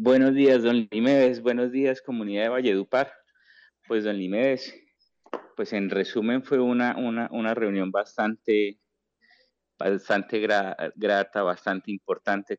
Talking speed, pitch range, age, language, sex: 115 wpm, 95-130 Hz, 30-49, English, male